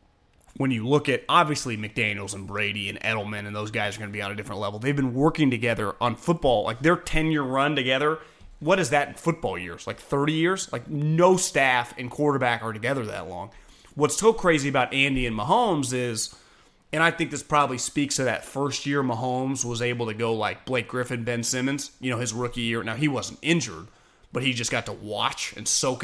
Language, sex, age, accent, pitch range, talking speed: English, male, 30-49, American, 115-145 Hz, 220 wpm